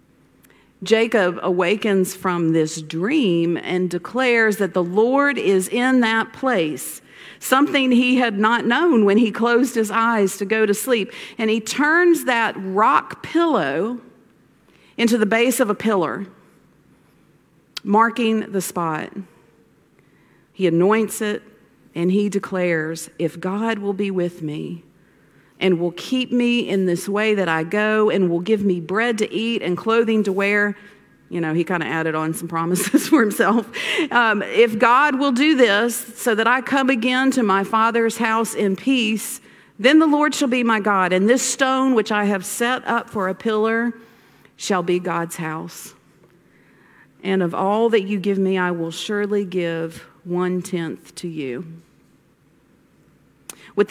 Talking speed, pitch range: 155 wpm, 180-235 Hz